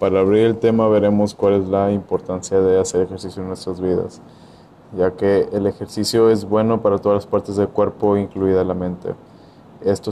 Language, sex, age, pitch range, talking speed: Spanish, male, 20-39, 95-105 Hz, 185 wpm